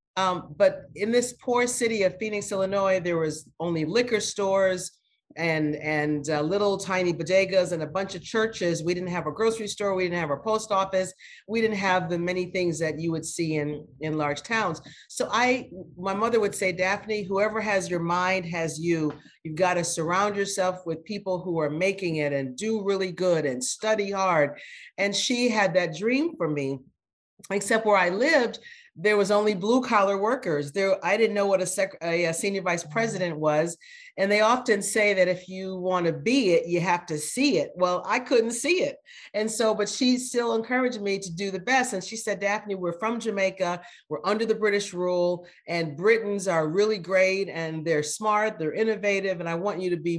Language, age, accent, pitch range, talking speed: English, 40-59, American, 170-215 Hz, 205 wpm